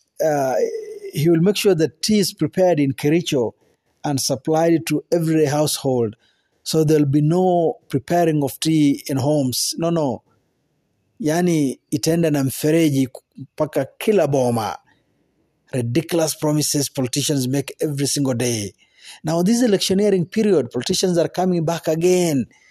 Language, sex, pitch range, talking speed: Swahili, male, 145-185 Hz, 115 wpm